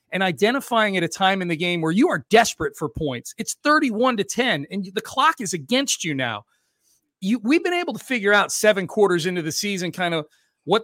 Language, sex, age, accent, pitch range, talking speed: English, male, 40-59, American, 160-215 Hz, 220 wpm